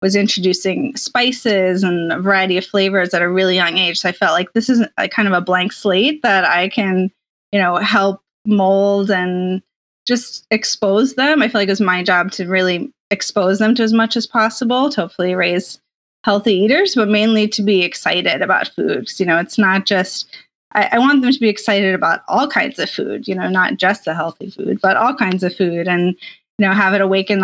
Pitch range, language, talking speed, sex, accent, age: 175-215 Hz, English, 215 wpm, female, American, 20-39